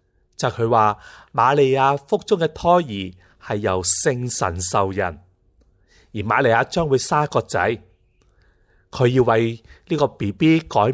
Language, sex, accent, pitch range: Chinese, male, native, 95-130 Hz